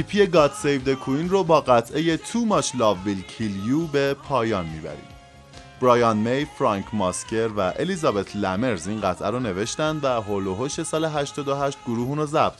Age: 30-49